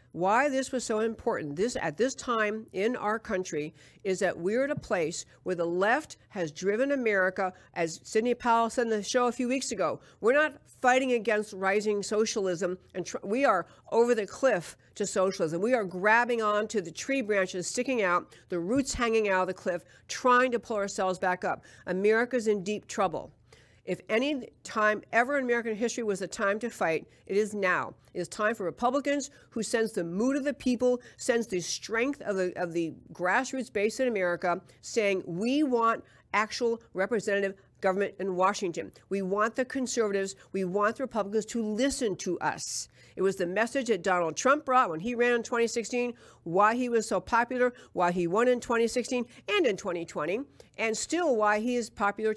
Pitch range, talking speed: 185-240 Hz, 190 wpm